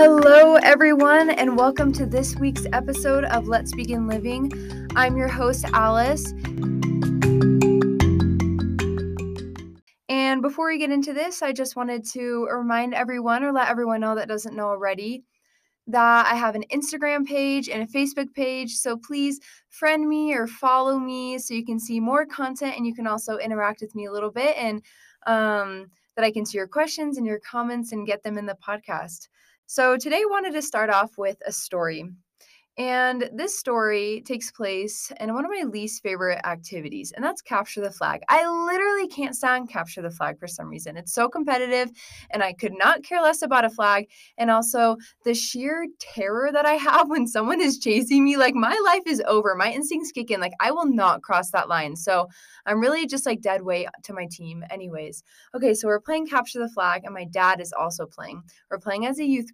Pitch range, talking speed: 195-275 Hz, 195 wpm